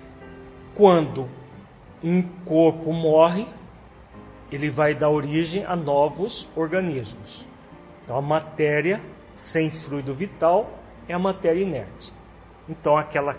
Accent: Brazilian